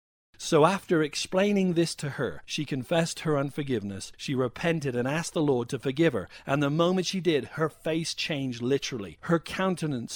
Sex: male